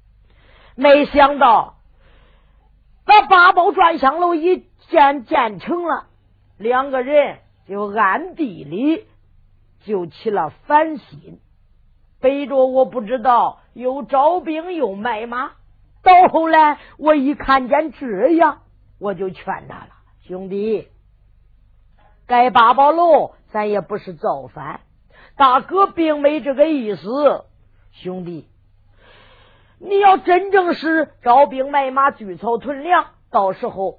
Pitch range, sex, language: 185-300 Hz, female, Chinese